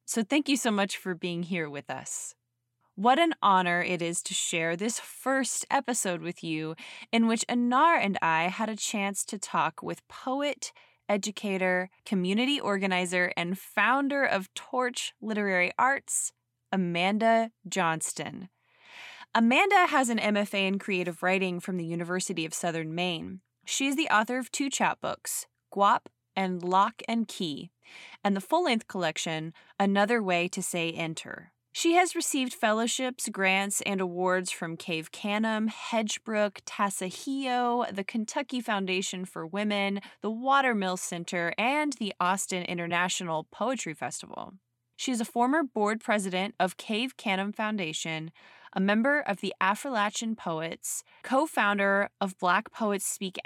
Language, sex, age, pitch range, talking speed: English, female, 20-39, 180-235 Hz, 140 wpm